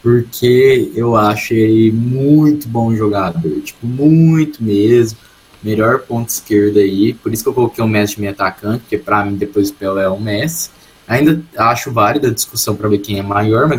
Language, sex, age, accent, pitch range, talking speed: Portuguese, male, 20-39, Brazilian, 105-125 Hz, 185 wpm